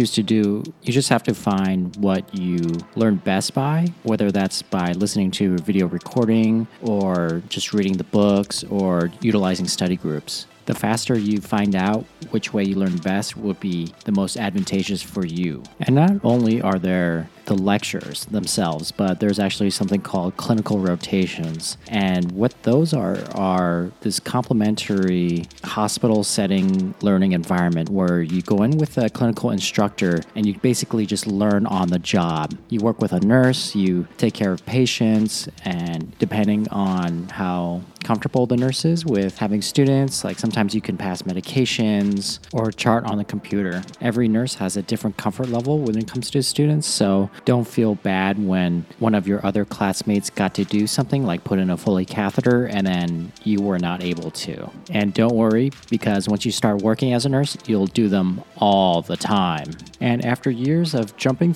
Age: 40-59